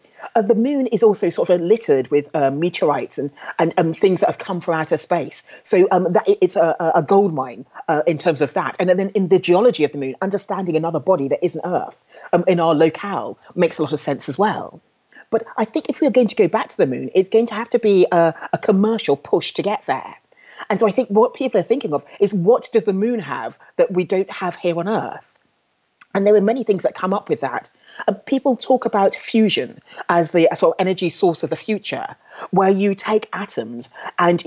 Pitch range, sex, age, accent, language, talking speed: 165-205 Hz, female, 30-49, British, English, 230 wpm